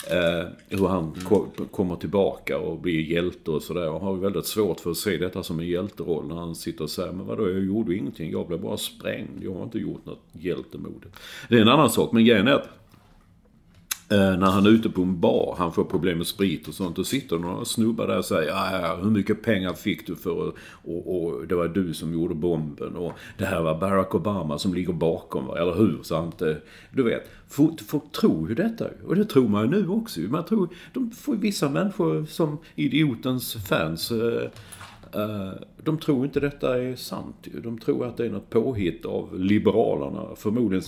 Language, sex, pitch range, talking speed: English, male, 90-120 Hz, 195 wpm